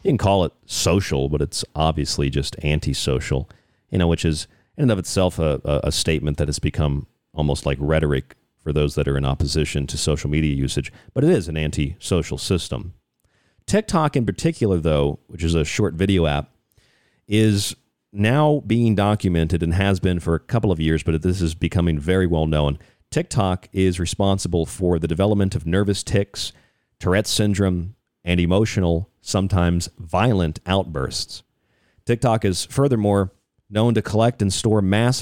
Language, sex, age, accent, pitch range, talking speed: English, male, 40-59, American, 80-110 Hz, 170 wpm